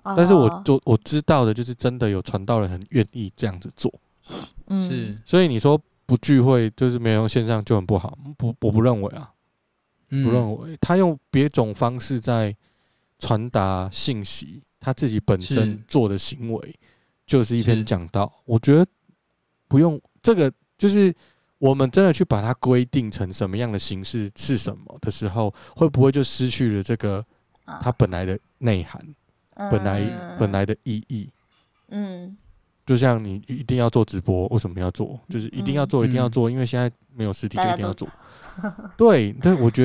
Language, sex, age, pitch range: Chinese, male, 20-39, 110-135 Hz